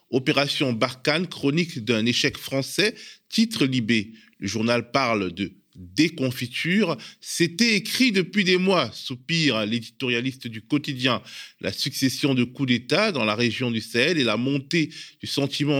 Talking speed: 140 wpm